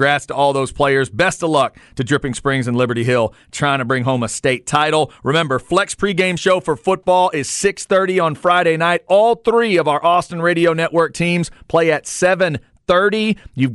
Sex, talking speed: male, 190 wpm